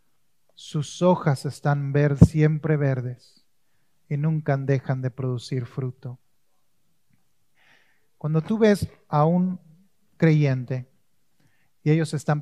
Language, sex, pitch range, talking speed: English, male, 130-175 Hz, 95 wpm